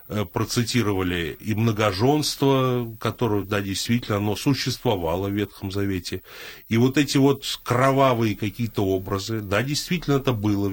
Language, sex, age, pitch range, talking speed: Russian, male, 30-49, 100-130 Hz, 135 wpm